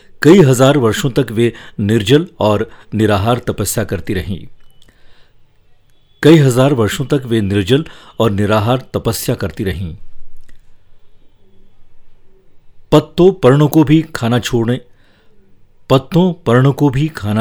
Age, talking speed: 50-69, 90 wpm